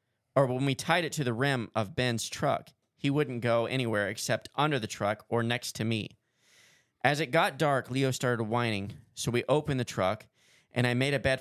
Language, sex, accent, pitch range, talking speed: English, male, American, 115-140 Hz, 210 wpm